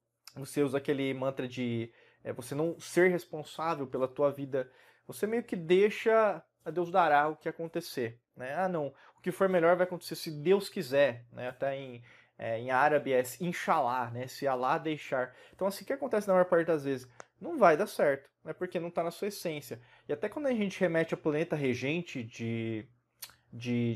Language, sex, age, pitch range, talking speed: Portuguese, male, 20-39, 135-175 Hz, 195 wpm